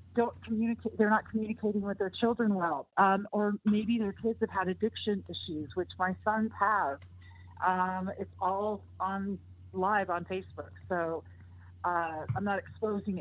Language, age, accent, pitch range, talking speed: English, 40-59, American, 150-205 Hz, 155 wpm